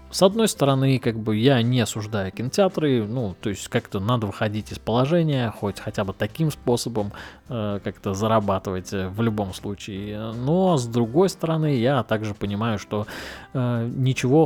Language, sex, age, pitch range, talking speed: Russian, male, 20-39, 100-130 Hz, 160 wpm